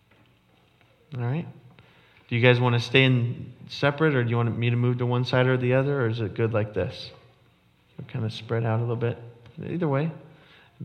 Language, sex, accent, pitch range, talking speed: English, male, American, 110-130 Hz, 220 wpm